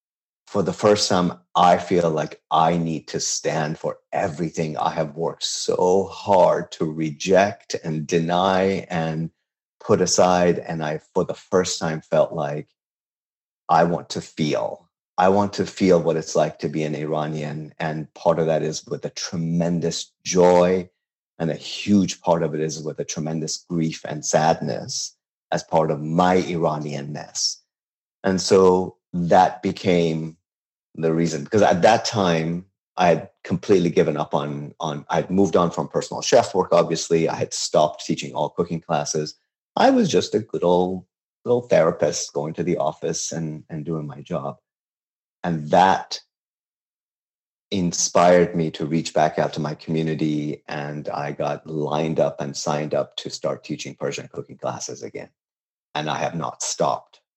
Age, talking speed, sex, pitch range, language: 40-59, 165 wpm, male, 75-90 Hz, English